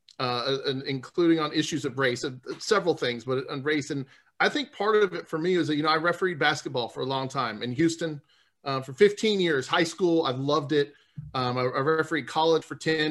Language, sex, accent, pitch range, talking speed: English, male, American, 145-190 Hz, 230 wpm